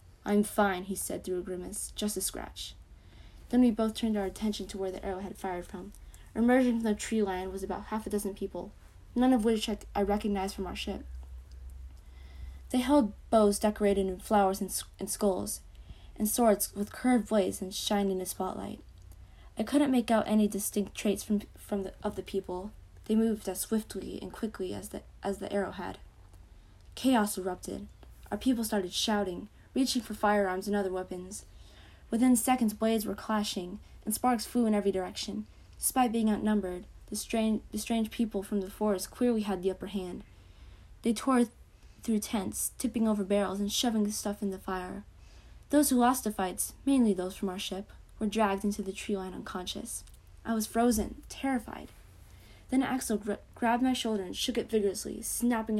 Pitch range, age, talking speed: 185-220 Hz, 20-39, 185 wpm